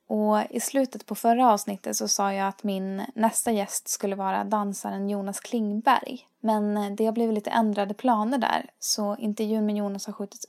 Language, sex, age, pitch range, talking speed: Swedish, female, 20-39, 205-235 Hz, 185 wpm